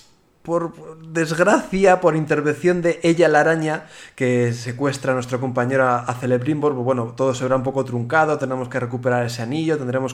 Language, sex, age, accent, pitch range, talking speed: Spanish, male, 20-39, Spanish, 125-145 Hz, 165 wpm